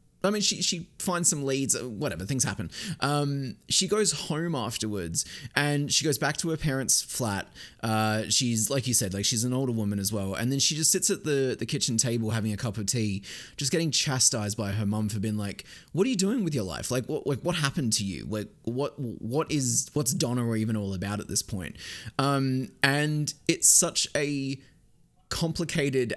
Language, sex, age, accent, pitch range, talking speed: English, male, 20-39, Australian, 110-140 Hz, 210 wpm